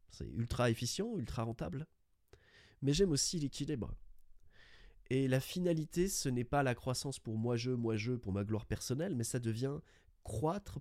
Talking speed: 155 wpm